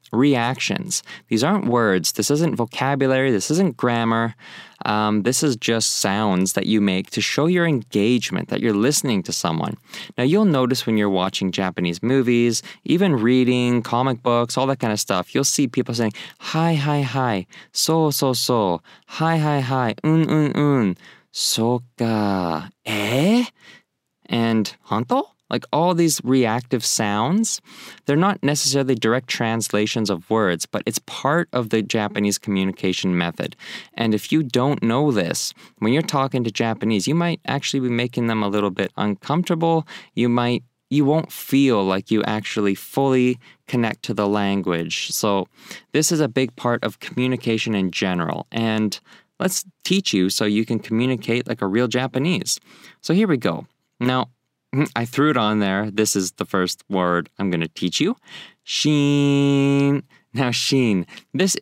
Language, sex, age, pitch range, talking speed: English, male, 20-39, 105-140 Hz, 160 wpm